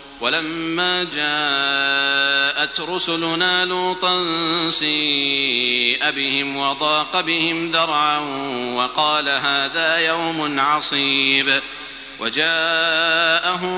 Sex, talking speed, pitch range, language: male, 60 wpm, 140-170 Hz, Arabic